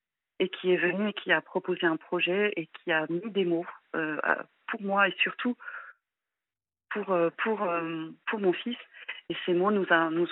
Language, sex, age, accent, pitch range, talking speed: French, female, 40-59, French, 165-190 Hz, 190 wpm